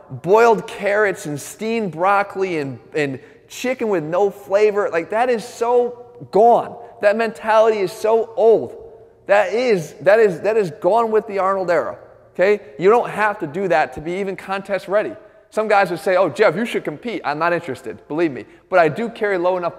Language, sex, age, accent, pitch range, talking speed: English, male, 30-49, American, 150-210 Hz, 195 wpm